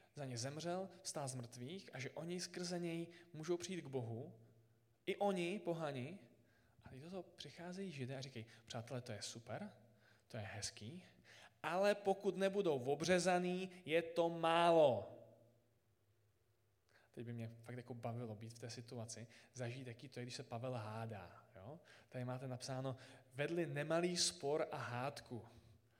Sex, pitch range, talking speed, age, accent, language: male, 115-160 Hz, 150 wpm, 20-39, native, Czech